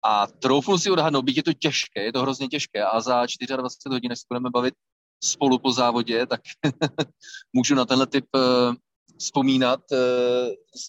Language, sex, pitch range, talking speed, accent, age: Czech, male, 120-150 Hz, 155 wpm, native, 30-49